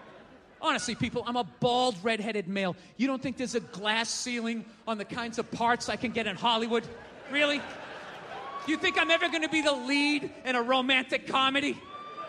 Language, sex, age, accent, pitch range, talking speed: English, male, 40-59, American, 235-365 Hz, 185 wpm